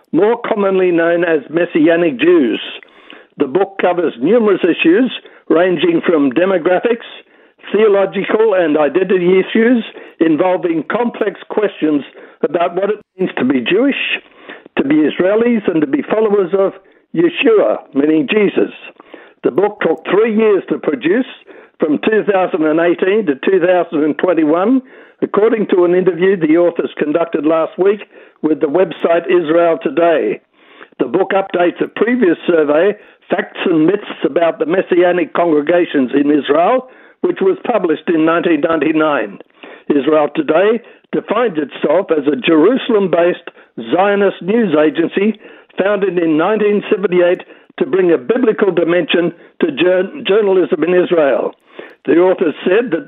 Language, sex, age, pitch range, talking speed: English, male, 60-79, 170-255 Hz, 125 wpm